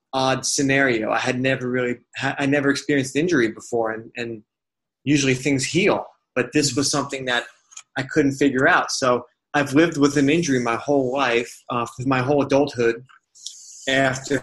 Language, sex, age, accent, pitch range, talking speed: English, male, 30-49, American, 125-145 Hz, 160 wpm